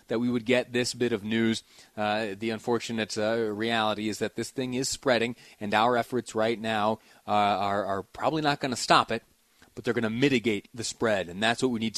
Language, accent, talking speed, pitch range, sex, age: English, American, 225 wpm, 110-130 Hz, male, 30-49